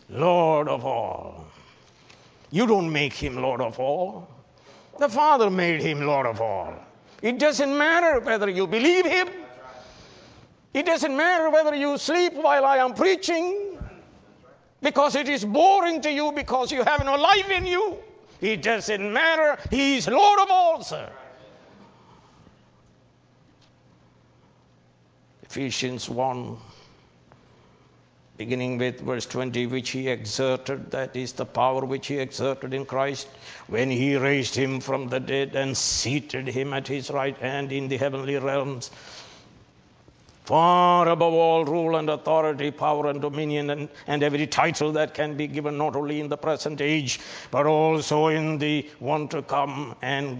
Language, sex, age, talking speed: English, male, 60-79, 145 wpm